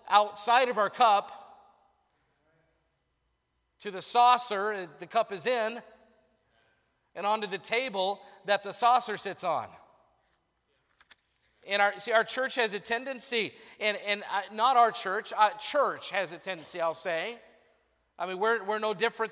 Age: 40-59